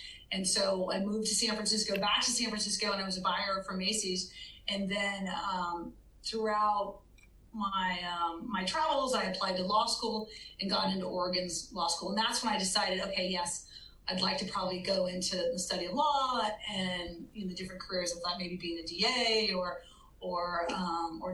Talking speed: 195 wpm